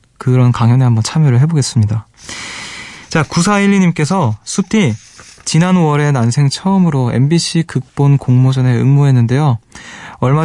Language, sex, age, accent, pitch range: Korean, male, 20-39, native, 120-150 Hz